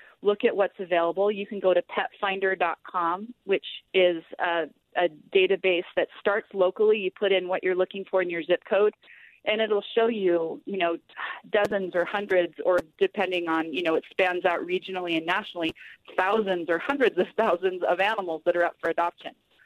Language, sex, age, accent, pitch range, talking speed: English, female, 30-49, American, 175-205 Hz, 185 wpm